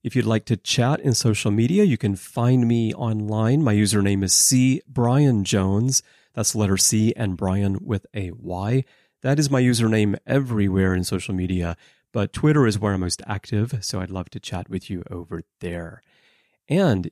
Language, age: English, 30-49